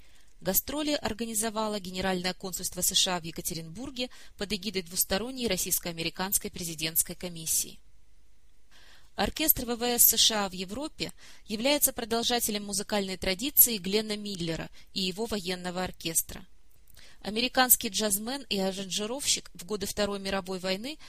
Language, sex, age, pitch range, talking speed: Russian, female, 20-39, 185-230 Hz, 105 wpm